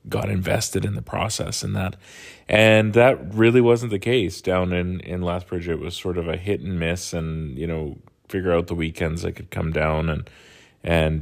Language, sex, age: English, male, 30-49